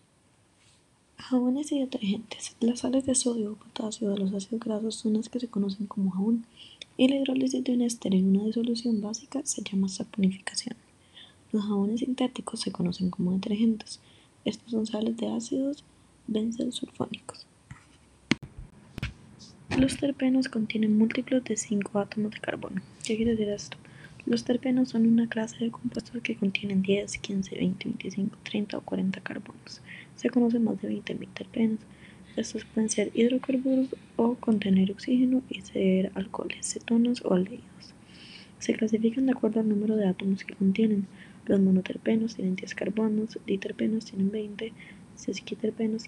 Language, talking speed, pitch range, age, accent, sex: Spanish, 150 wpm, 200-240 Hz, 20-39, Colombian, female